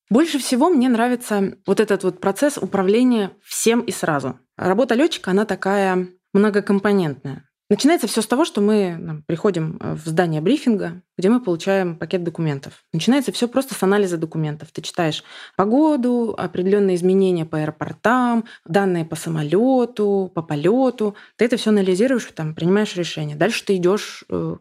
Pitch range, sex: 170-215 Hz, female